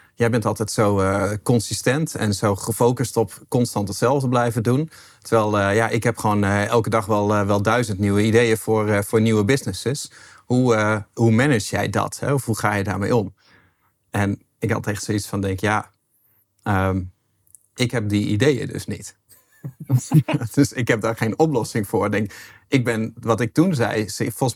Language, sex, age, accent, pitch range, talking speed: Dutch, male, 40-59, Dutch, 105-120 Hz, 185 wpm